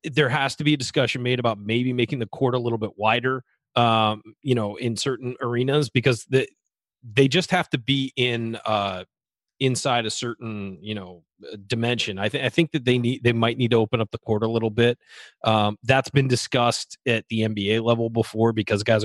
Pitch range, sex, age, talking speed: 110-130 Hz, male, 30-49, 210 wpm